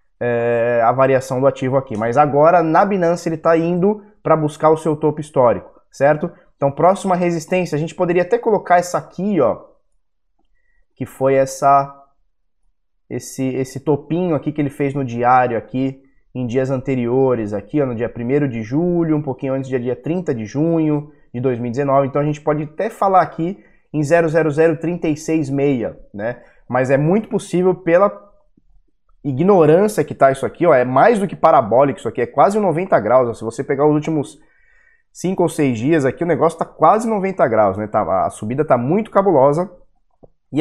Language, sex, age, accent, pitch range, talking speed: Portuguese, male, 20-39, Brazilian, 130-165 Hz, 175 wpm